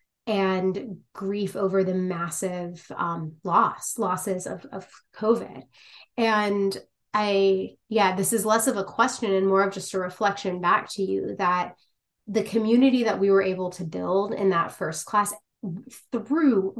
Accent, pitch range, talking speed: American, 185-210 Hz, 155 wpm